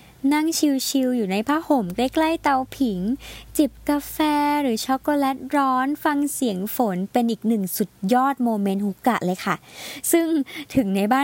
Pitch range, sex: 210-275 Hz, male